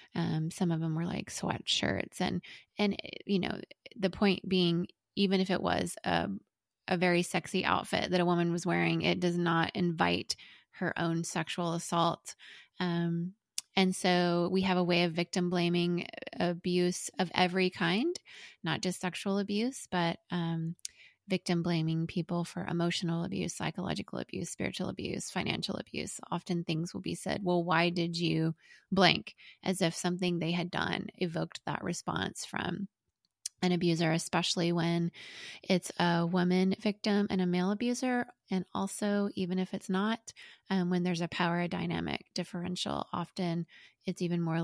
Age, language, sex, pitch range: 20-39, English, female, 170-190 Hz